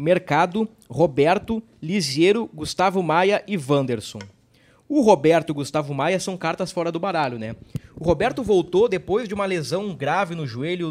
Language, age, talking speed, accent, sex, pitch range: Portuguese, 20-39, 160 wpm, Brazilian, male, 150-195 Hz